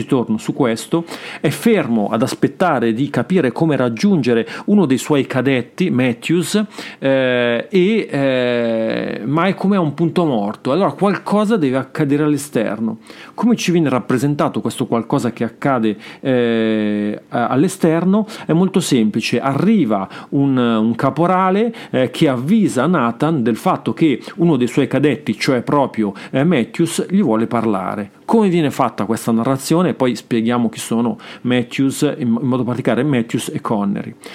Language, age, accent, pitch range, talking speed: Italian, 40-59, native, 120-170 Hz, 140 wpm